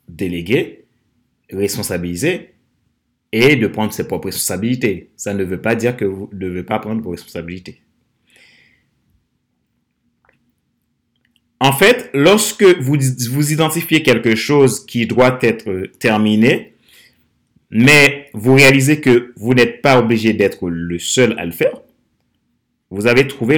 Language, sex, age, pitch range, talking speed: French, male, 30-49, 100-135 Hz, 125 wpm